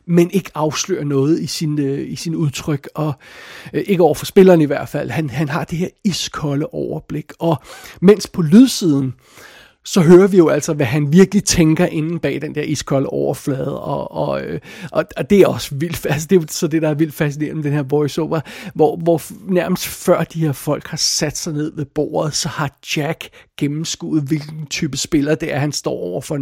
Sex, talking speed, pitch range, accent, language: male, 210 wpm, 145-170 Hz, native, Danish